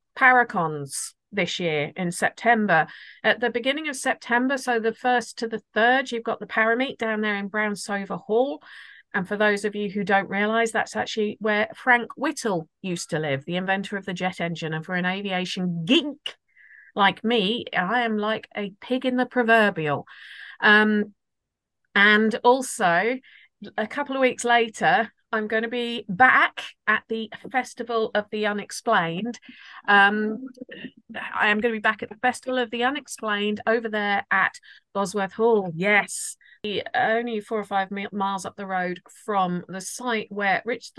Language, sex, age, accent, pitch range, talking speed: English, female, 40-59, British, 200-245 Hz, 165 wpm